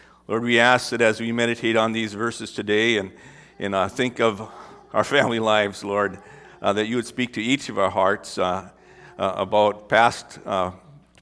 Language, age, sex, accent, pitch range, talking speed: English, 50-69, male, American, 110-145 Hz, 185 wpm